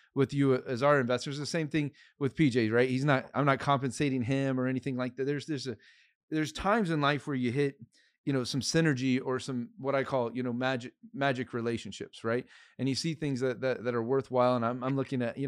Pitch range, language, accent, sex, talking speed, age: 120-135 Hz, English, American, male, 235 wpm, 30-49